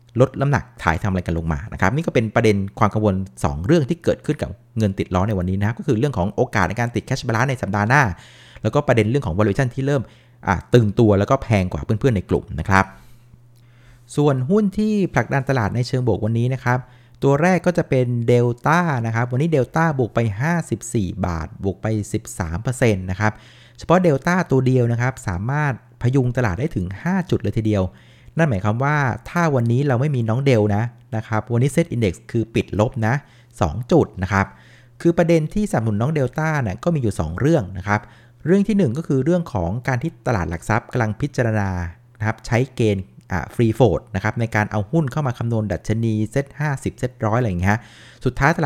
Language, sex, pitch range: Thai, male, 105-135 Hz